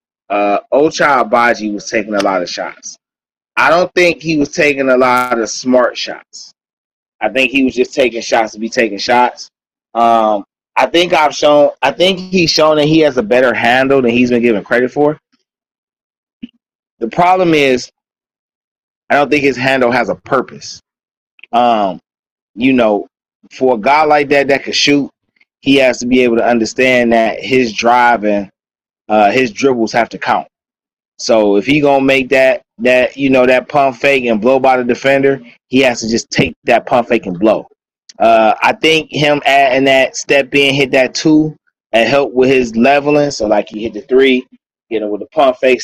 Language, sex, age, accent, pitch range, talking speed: English, male, 20-39, American, 120-145 Hz, 195 wpm